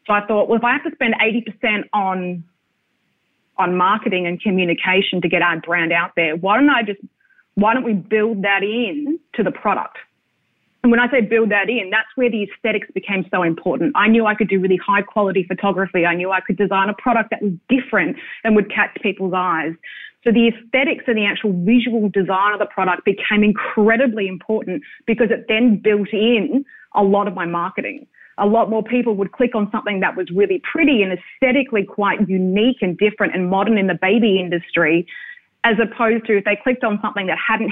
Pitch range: 185-230 Hz